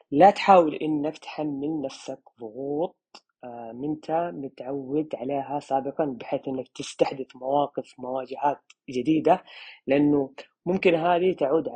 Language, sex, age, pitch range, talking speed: Arabic, female, 30-49, 140-180 Hz, 100 wpm